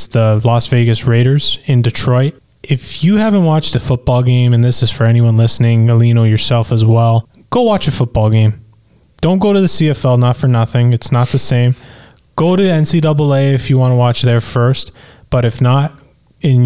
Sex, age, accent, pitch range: male, 20-39, American, 120-150 Hz